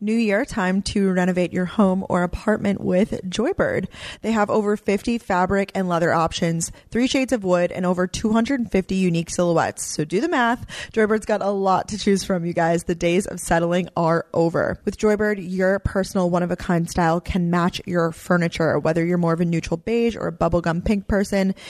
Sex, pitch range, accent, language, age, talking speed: female, 170-200 Hz, American, English, 20-39, 190 wpm